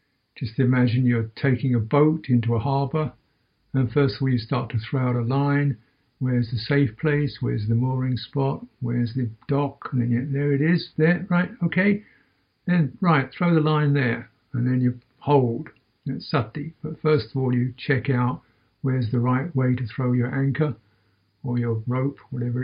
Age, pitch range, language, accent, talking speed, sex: 60-79, 115-135 Hz, English, British, 190 wpm, male